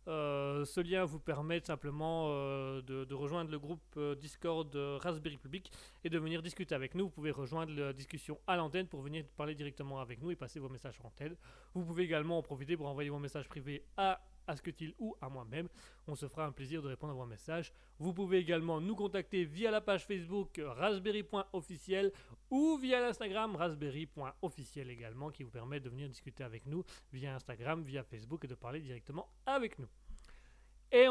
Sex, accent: male, French